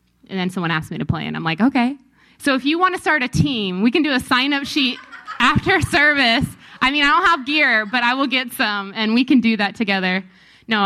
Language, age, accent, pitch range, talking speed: English, 20-39, American, 185-245 Hz, 250 wpm